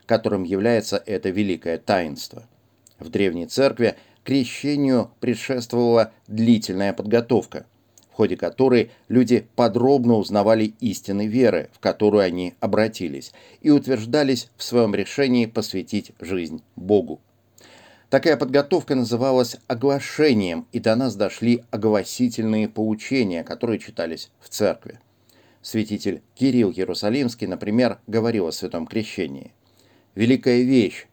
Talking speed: 110 wpm